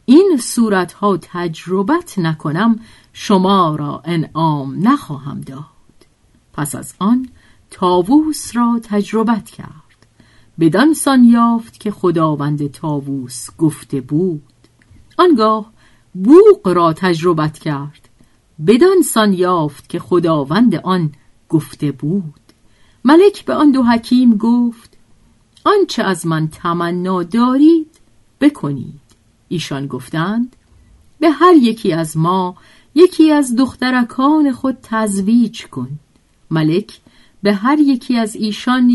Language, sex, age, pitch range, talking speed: Persian, female, 50-69, 155-250 Hz, 105 wpm